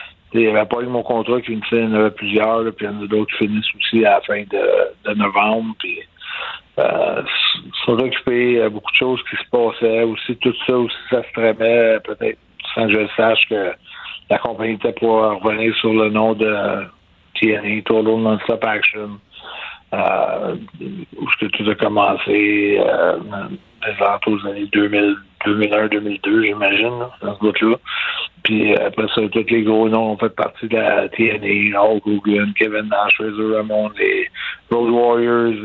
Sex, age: male, 50-69